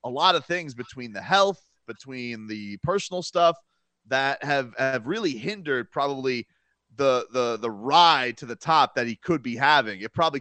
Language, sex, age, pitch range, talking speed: English, male, 30-49, 135-215 Hz, 180 wpm